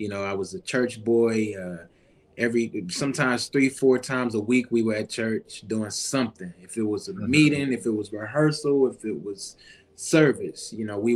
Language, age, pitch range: English, 20-39, 105-130 Hz